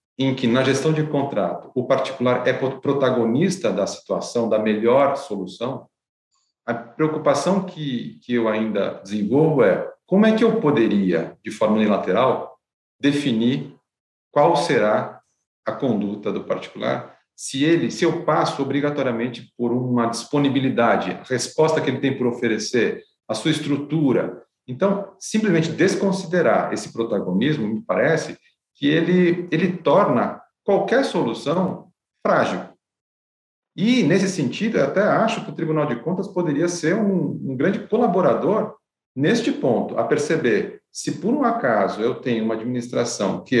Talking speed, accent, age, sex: 140 wpm, Brazilian, 50-69, male